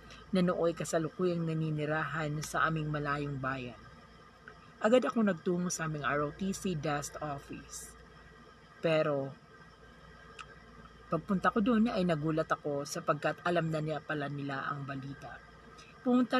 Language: Filipino